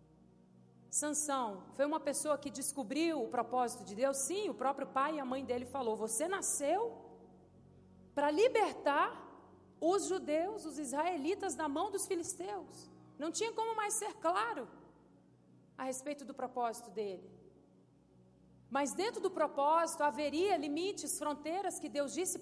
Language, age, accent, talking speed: Portuguese, 40-59, Brazilian, 140 wpm